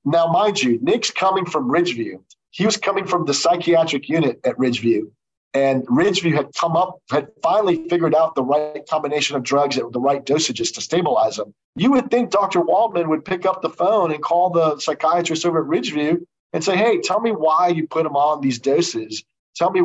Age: 40-59